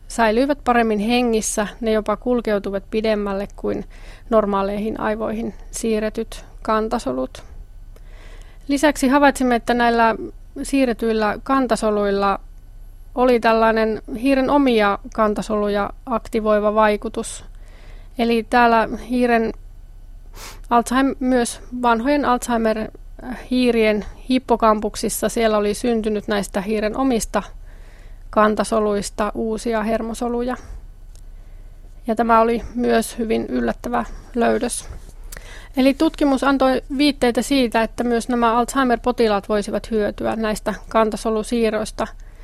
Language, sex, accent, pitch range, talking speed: Finnish, female, native, 205-240 Hz, 90 wpm